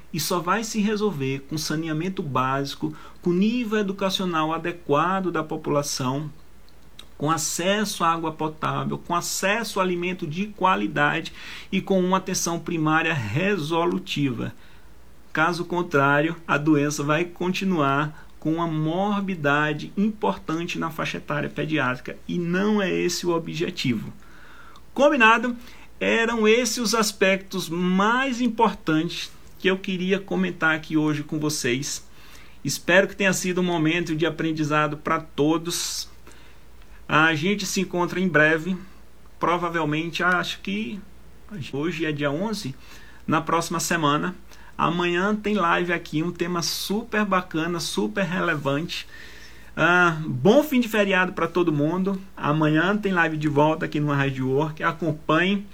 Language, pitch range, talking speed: Portuguese, 150-190 Hz, 130 wpm